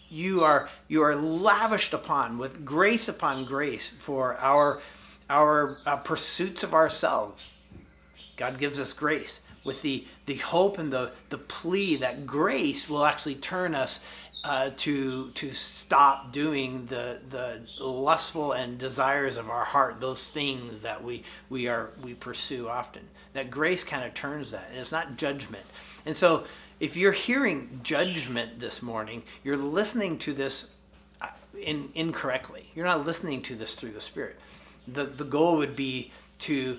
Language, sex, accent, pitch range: English, male, American, 120-150 Hz